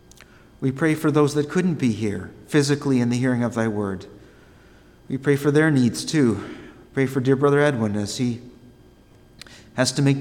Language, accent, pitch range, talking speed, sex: English, American, 105-130 Hz, 180 wpm, male